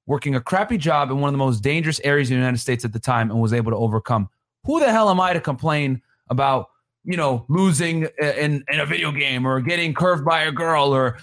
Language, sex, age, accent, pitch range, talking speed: English, male, 30-49, American, 120-175 Hz, 245 wpm